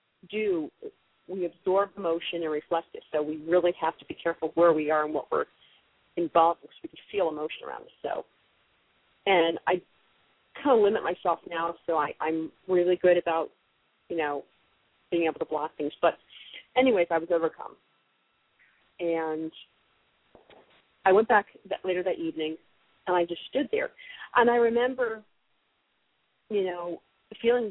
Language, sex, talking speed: English, female, 160 wpm